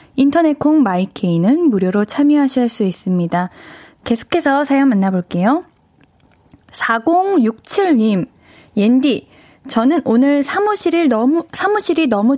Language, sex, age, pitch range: Korean, female, 10-29, 210-310 Hz